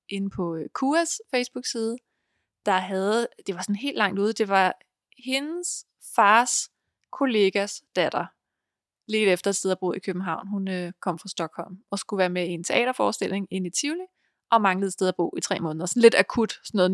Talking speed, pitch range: 190 wpm, 190-250 Hz